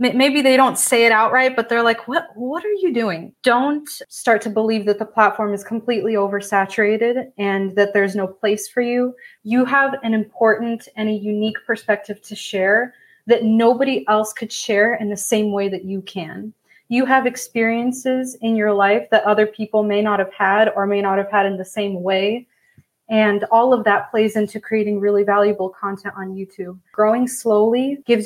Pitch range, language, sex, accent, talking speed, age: 200-230 Hz, English, female, American, 190 wpm, 20-39